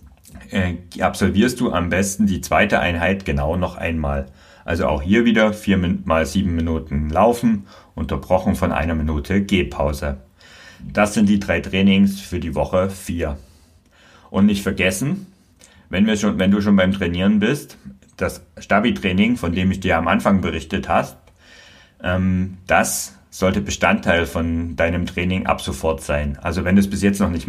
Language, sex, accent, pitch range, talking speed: German, male, German, 80-95 Hz, 160 wpm